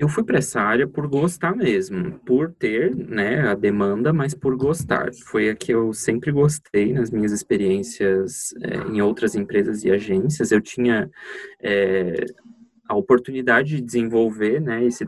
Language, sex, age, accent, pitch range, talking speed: Portuguese, male, 20-39, Brazilian, 120-170 Hz, 160 wpm